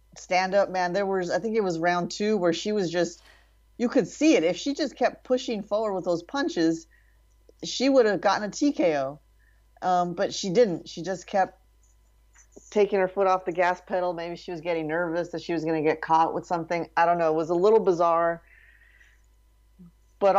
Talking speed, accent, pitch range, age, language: 210 wpm, American, 170-200 Hz, 30-49, English